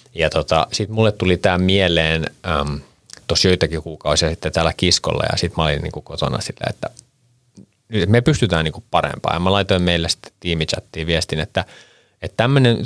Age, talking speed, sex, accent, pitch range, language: 30-49, 165 wpm, male, native, 80-105 Hz, Finnish